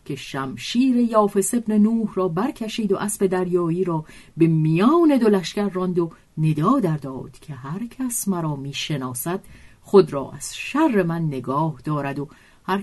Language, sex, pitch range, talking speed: Persian, female, 150-210 Hz, 150 wpm